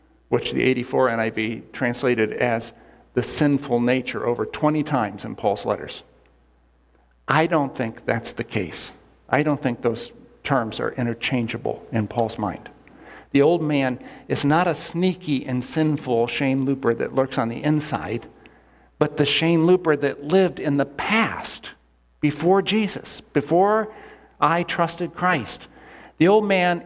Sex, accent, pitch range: male, American, 120-165 Hz